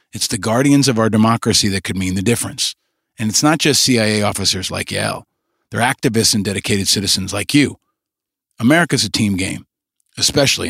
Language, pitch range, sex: English, 105-130 Hz, male